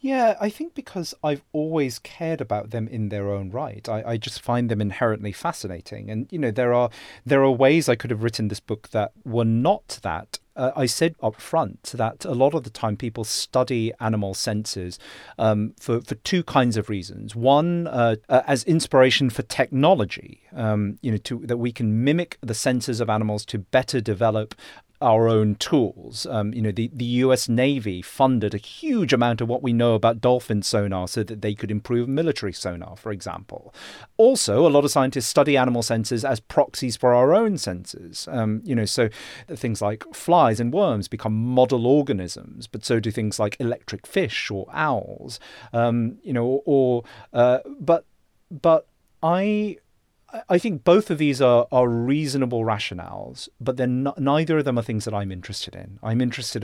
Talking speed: 190 wpm